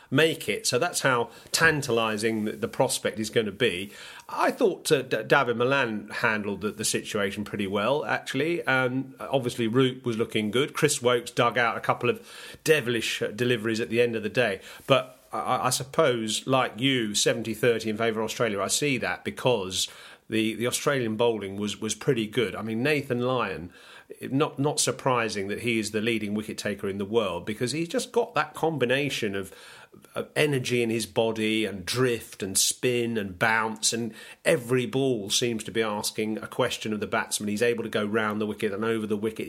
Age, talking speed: 40-59, 195 wpm